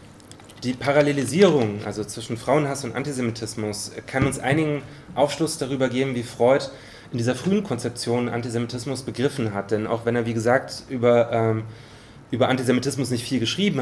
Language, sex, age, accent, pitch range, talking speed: German, male, 30-49, German, 110-135 Hz, 150 wpm